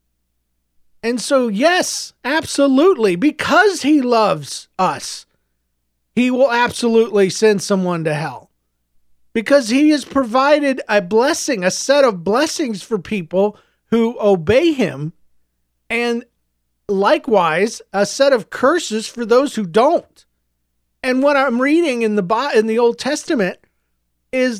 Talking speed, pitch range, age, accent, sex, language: 125 wpm, 160-240 Hz, 40-59, American, male, English